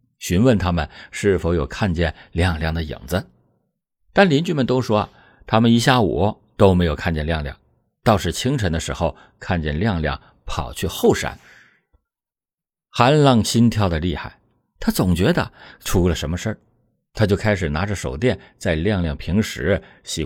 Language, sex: Chinese, male